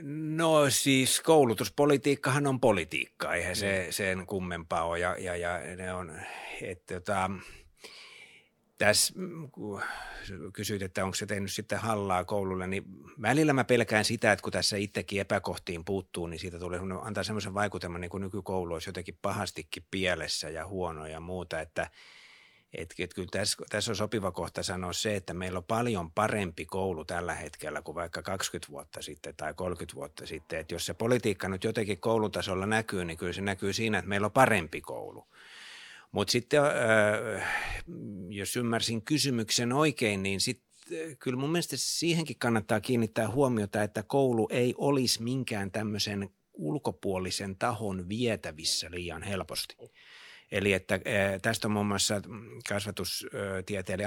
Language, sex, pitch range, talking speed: Finnish, male, 90-115 Hz, 140 wpm